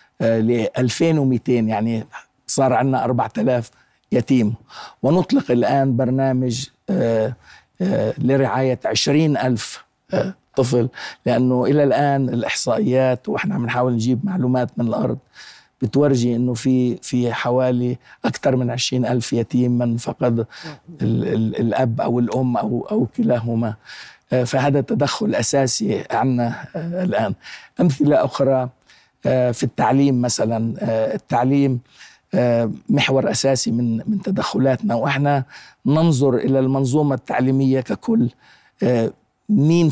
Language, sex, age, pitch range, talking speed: Arabic, male, 50-69, 120-135 Hz, 95 wpm